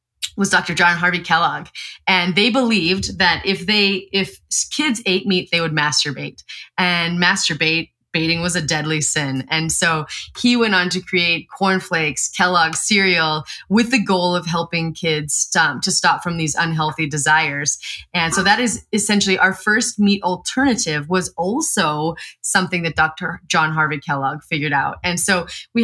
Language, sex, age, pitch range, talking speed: English, female, 20-39, 165-200 Hz, 165 wpm